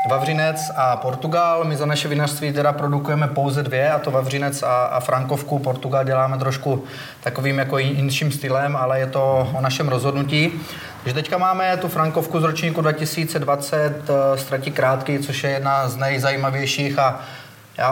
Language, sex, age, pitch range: Slovak, male, 30-49, 130-145 Hz